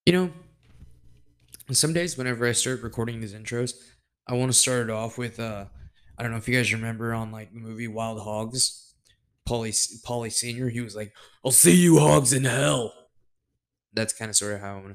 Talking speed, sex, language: 200 wpm, male, English